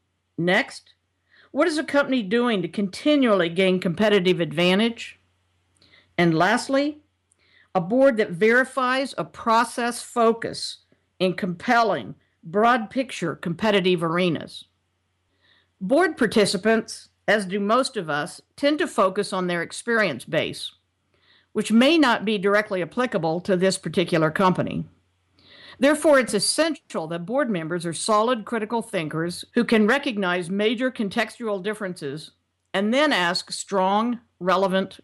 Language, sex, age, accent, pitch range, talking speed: English, female, 50-69, American, 170-230 Hz, 120 wpm